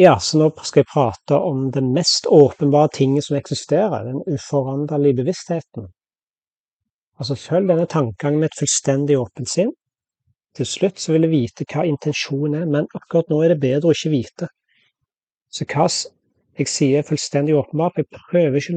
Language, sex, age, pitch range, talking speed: English, male, 30-49, 140-170 Hz, 165 wpm